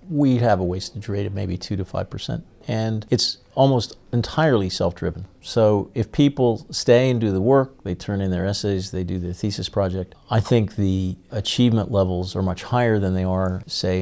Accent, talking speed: American, 195 wpm